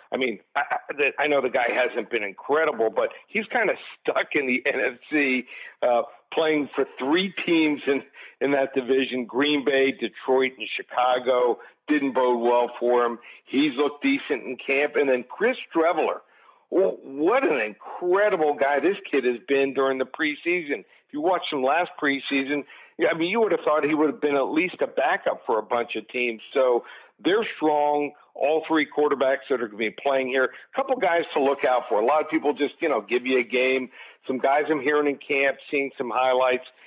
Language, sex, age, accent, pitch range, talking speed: English, male, 60-79, American, 125-150 Hz, 195 wpm